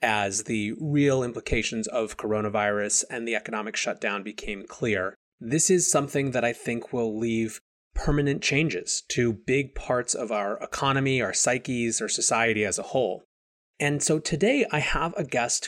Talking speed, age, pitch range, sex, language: 160 wpm, 30-49, 110-140 Hz, male, English